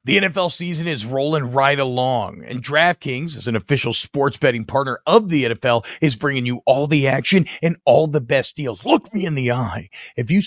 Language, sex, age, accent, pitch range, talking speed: English, male, 40-59, American, 135-190 Hz, 205 wpm